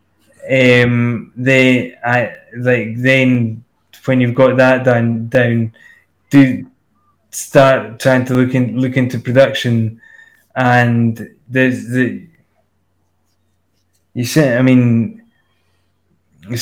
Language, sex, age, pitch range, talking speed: English, male, 20-39, 115-130 Hz, 100 wpm